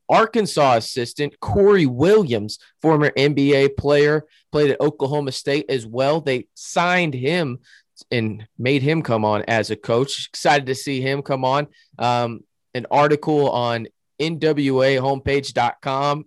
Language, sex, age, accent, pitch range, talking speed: English, male, 20-39, American, 125-150 Hz, 130 wpm